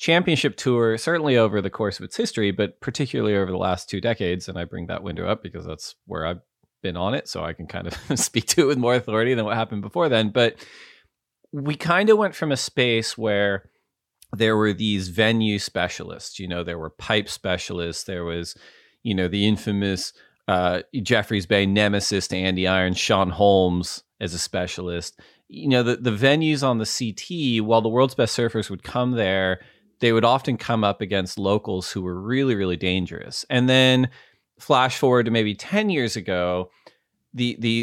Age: 30-49